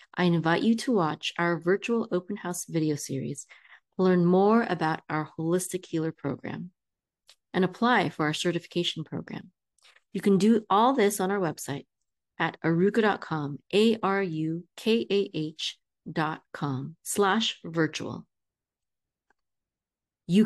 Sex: female